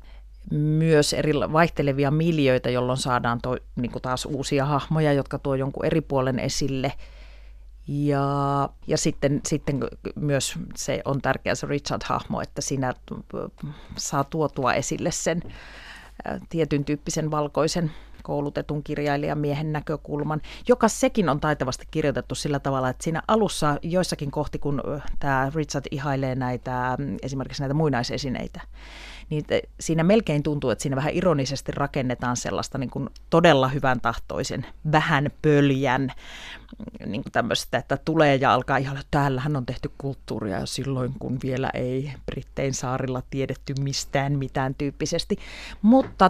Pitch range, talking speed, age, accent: 130-155 Hz, 130 wpm, 40-59, native